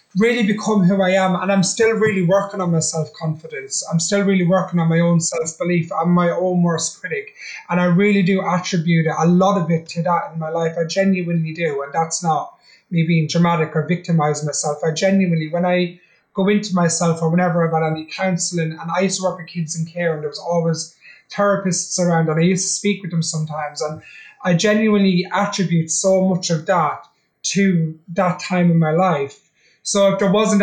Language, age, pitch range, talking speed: English, 30-49, 165-195 Hz, 210 wpm